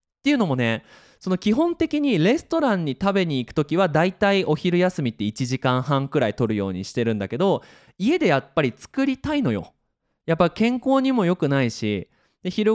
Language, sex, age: Japanese, male, 20-39